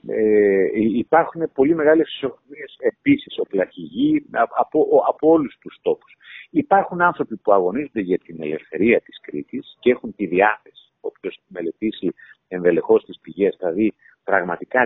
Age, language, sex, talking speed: 50-69, Greek, male, 135 wpm